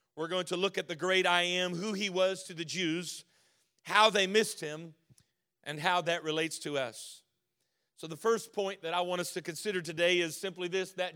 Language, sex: English, male